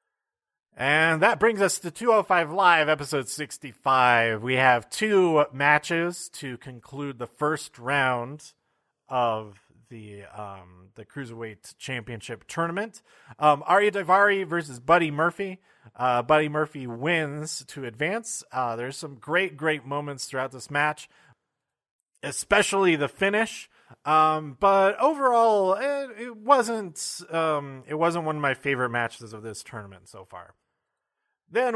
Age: 30-49